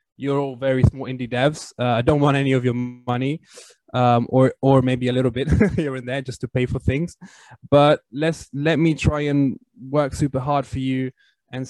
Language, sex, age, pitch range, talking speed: English, male, 20-39, 125-150 Hz, 210 wpm